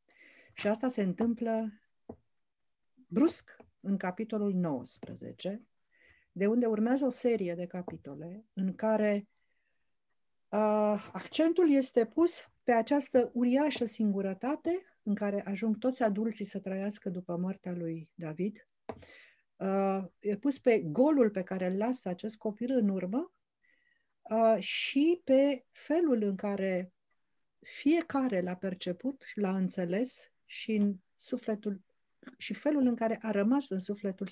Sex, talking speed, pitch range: female, 120 wpm, 190-240 Hz